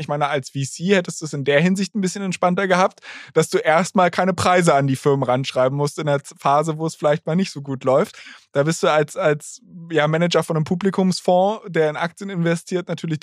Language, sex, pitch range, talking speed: German, male, 155-185 Hz, 225 wpm